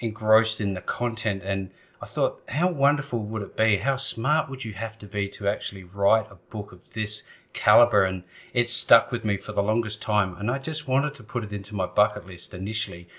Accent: Australian